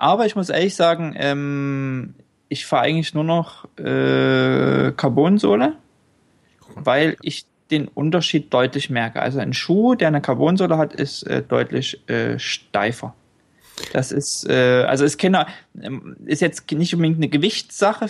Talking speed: 145 wpm